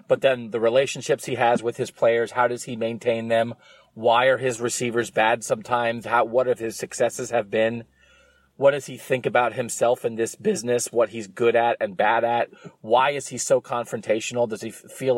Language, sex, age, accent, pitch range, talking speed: English, male, 30-49, American, 115-140 Hz, 205 wpm